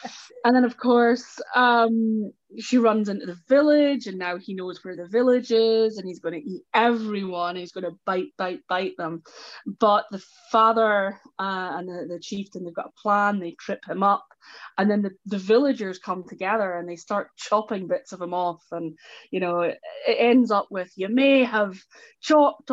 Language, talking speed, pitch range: English, 195 wpm, 180-235 Hz